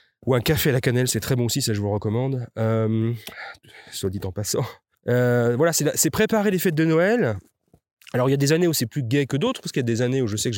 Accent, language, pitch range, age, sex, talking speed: French, French, 100-130 Hz, 30-49, male, 290 wpm